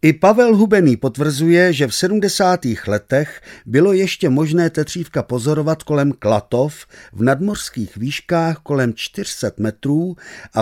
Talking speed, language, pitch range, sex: 125 wpm, Czech, 110-165 Hz, male